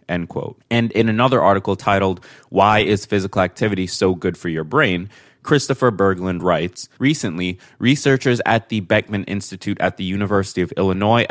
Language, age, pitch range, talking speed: English, 20-39, 95-120 Hz, 160 wpm